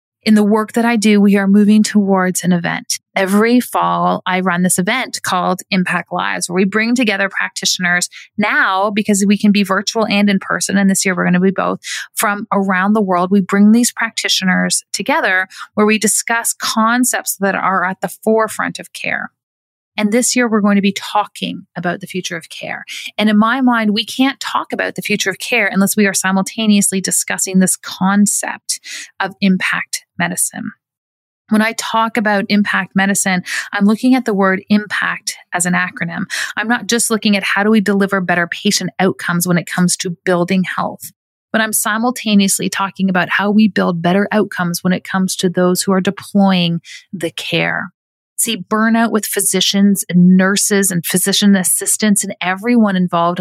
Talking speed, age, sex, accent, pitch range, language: 185 wpm, 30-49, female, American, 185-215 Hz, English